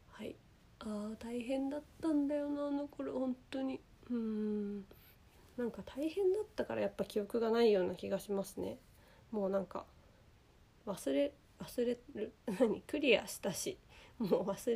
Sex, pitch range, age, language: female, 205-270 Hz, 20-39, Japanese